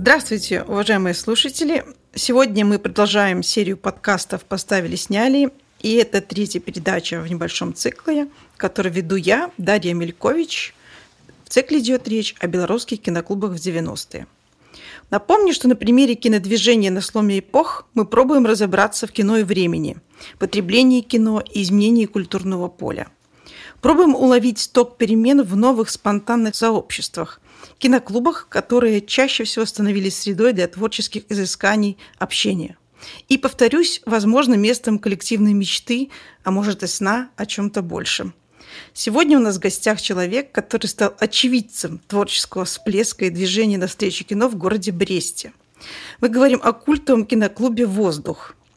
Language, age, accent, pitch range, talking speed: Russian, 40-59, native, 195-245 Hz, 130 wpm